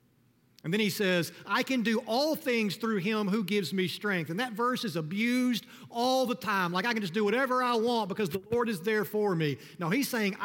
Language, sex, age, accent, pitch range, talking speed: English, male, 40-59, American, 135-205 Hz, 235 wpm